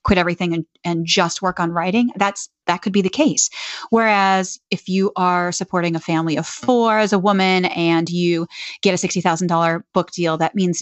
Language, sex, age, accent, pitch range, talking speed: English, female, 30-49, American, 175-220 Hz, 205 wpm